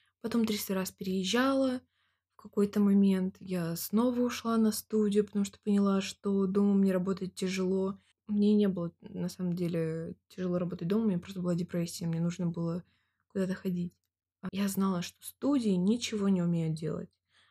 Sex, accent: female, native